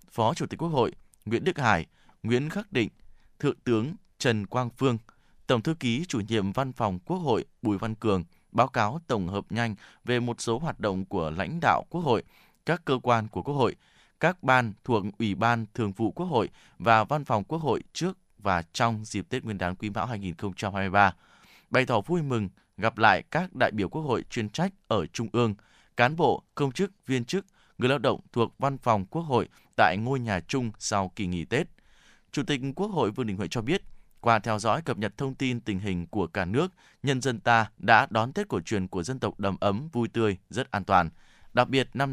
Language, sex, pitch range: Vietnamese, male, 105-135 Hz